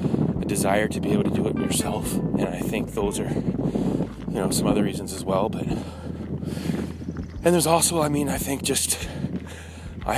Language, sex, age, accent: English, male, 20-39, American